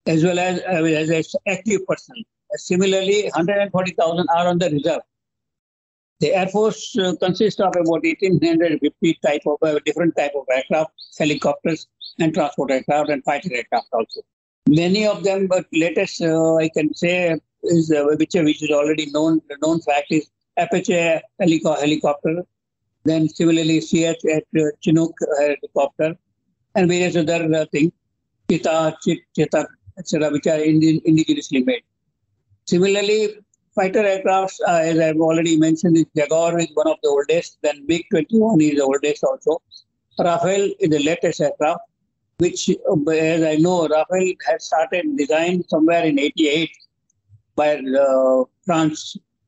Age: 60-79